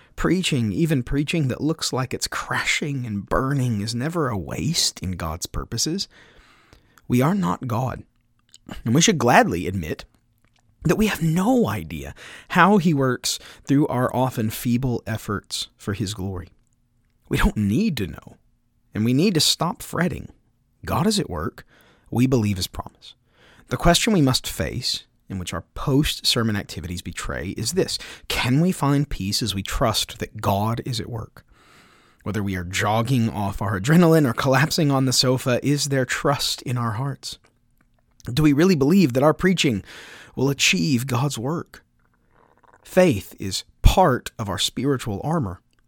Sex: male